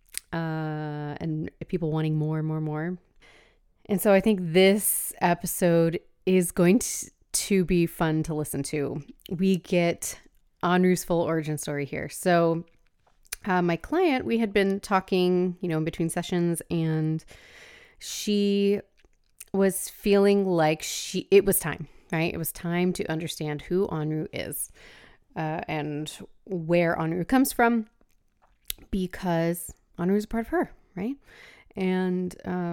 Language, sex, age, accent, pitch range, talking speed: English, female, 30-49, American, 160-195 Hz, 140 wpm